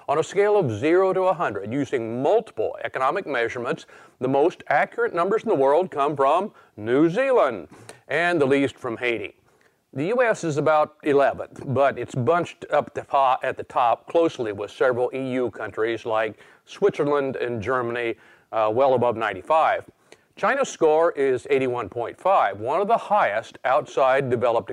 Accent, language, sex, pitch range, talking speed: American, English, male, 125-200 Hz, 155 wpm